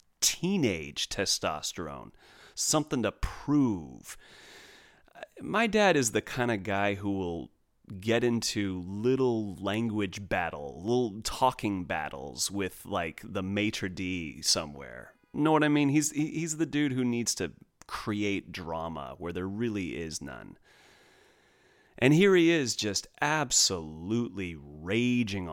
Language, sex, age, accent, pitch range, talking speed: English, male, 30-49, American, 95-145 Hz, 125 wpm